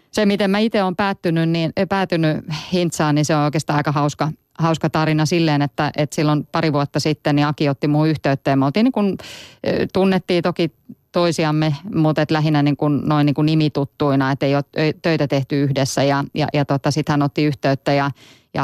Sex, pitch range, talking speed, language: female, 140-155 Hz, 200 wpm, Finnish